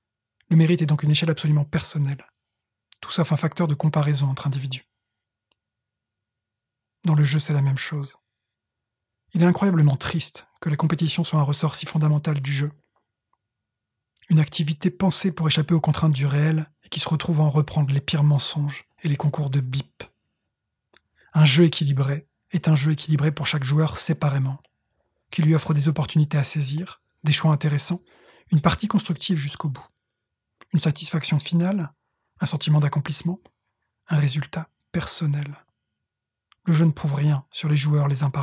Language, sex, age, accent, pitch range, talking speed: French, male, 20-39, French, 140-160 Hz, 165 wpm